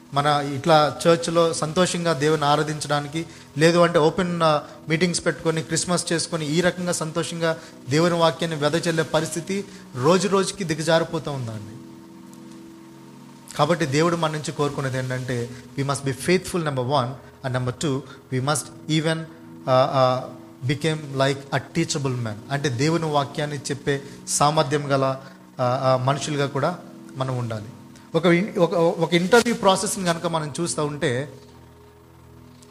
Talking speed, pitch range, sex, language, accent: 125 wpm, 135-180 Hz, male, Telugu, native